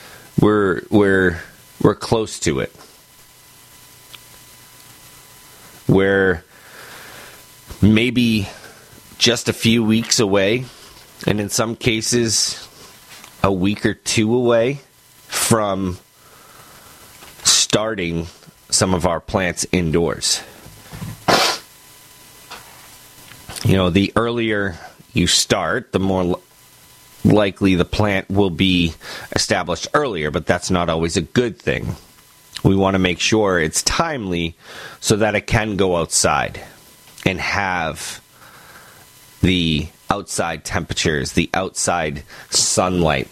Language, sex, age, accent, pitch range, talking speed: English, male, 30-49, American, 85-110 Hz, 100 wpm